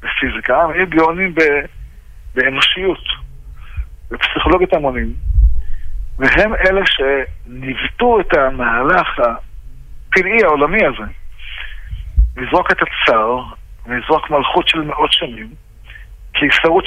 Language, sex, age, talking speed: Hebrew, male, 50-69, 80 wpm